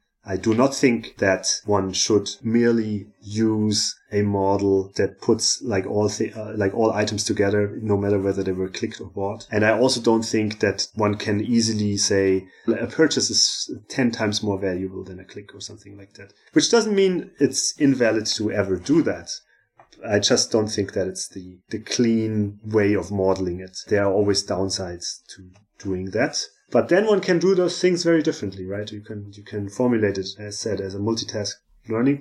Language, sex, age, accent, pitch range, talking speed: English, male, 30-49, German, 100-120 Hz, 195 wpm